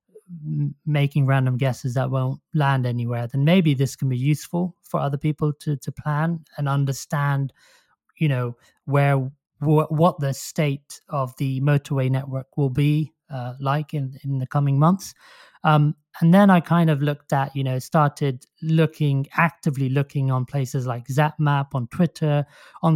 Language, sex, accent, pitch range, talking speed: English, male, British, 135-155 Hz, 165 wpm